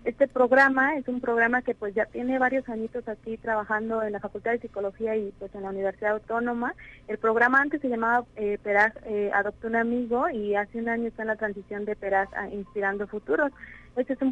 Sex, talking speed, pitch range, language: female, 215 wpm, 210-235 Hz, Spanish